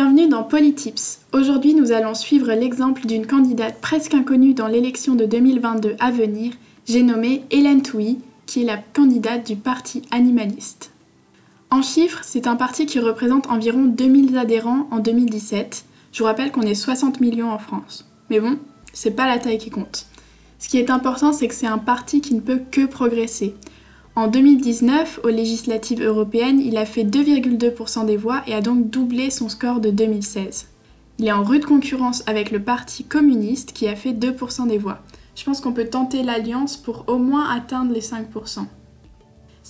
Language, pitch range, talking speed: French, 225-270 Hz, 180 wpm